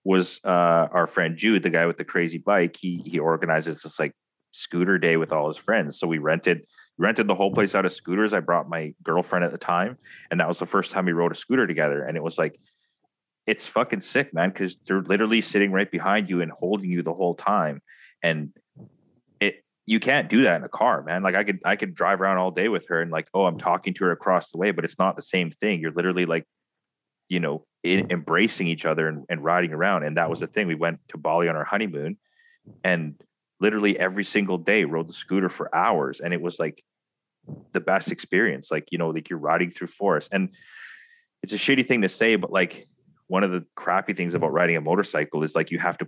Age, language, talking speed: 30-49, English, 235 wpm